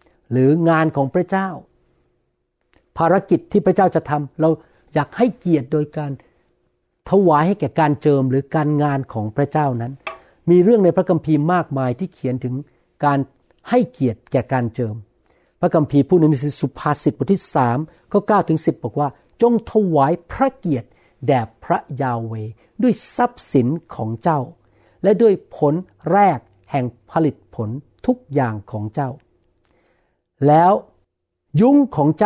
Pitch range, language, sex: 130-180 Hz, Thai, male